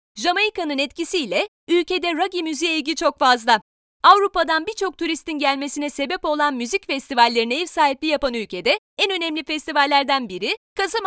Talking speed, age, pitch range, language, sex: 135 wpm, 30-49, 280-360 Hz, Turkish, female